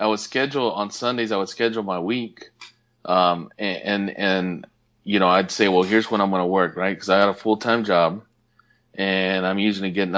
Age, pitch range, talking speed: 30-49, 95-115 Hz, 210 wpm